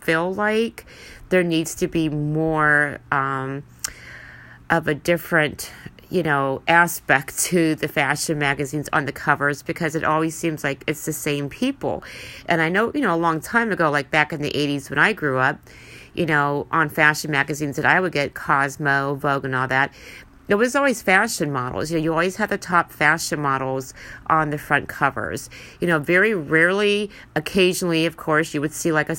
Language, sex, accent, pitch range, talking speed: English, female, American, 140-170 Hz, 185 wpm